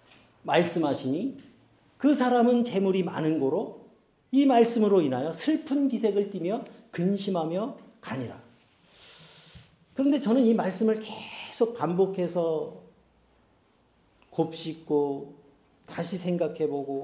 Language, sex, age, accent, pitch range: Korean, male, 40-59, native, 180-245 Hz